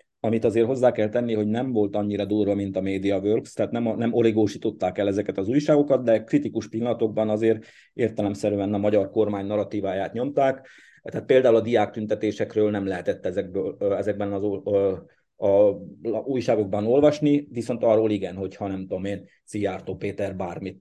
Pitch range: 100-120 Hz